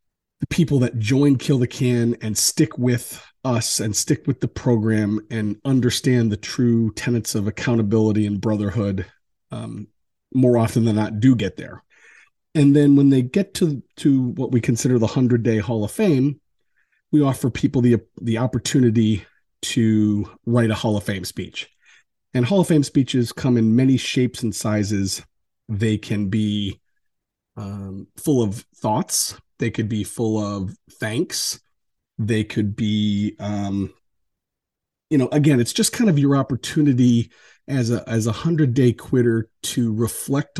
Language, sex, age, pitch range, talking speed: English, male, 40-59, 105-130 Hz, 155 wpm